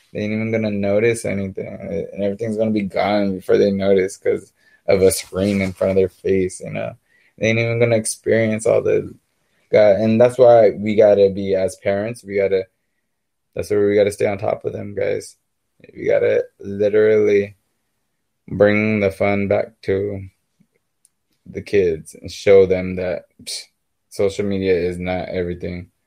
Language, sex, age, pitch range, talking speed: English, male, 20-39, 100-120 Hz, 185 wpm